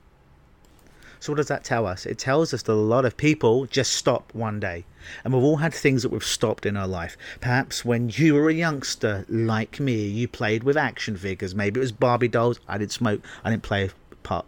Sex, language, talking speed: male, English, 225 wpm